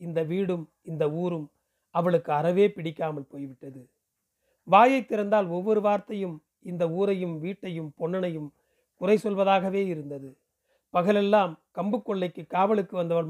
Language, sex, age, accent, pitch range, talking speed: Tamil, male, 40-59, native, 165-205 Hz, 110 wpm